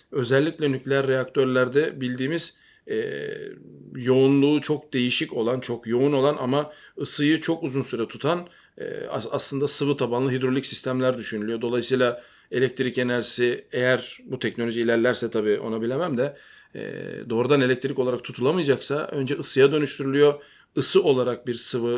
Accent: native